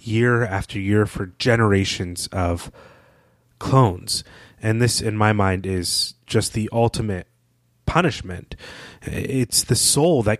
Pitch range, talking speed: 95-120 Hz, 120 wpm